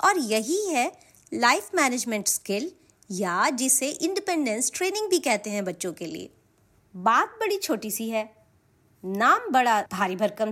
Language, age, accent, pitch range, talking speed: Hindi, 30-49, native, 210-310 Hz, 145 wpm